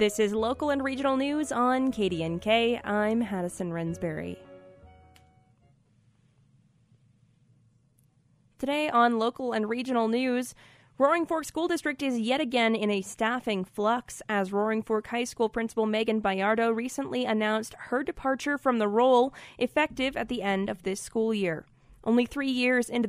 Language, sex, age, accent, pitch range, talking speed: English, female, 20-39, American, 195-250 Hz, 145 wpm